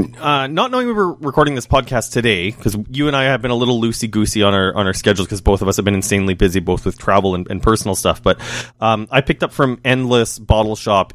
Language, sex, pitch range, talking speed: English, male, 100-125 Hz, 255 wpm